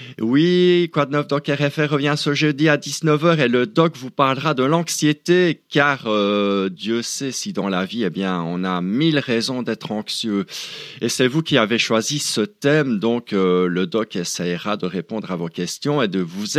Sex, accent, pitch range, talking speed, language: male, French, 110-150 Hz, 190 wpm, French